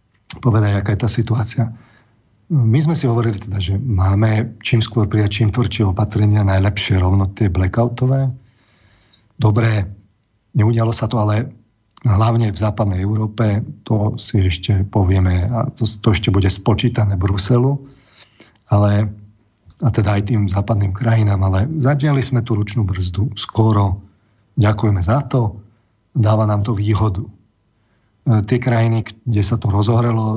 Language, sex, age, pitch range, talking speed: Slovak, male, 40-59, 105-115 Hz, 135 wpm